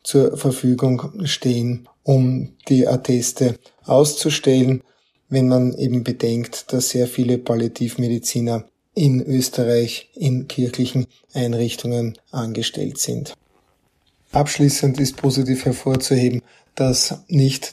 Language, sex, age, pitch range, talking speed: German, male, 20-39, 125-135 Hz, 95 wpm